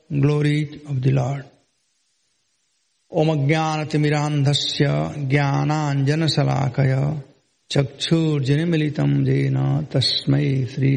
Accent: Indian